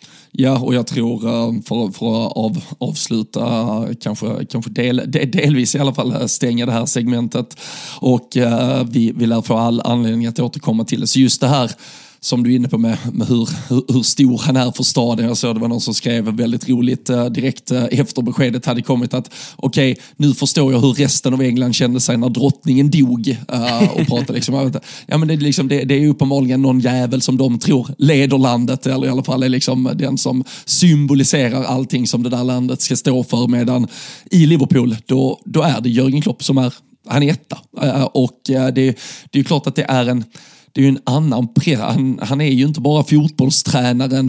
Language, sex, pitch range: Swedish, male, 120-140 Hz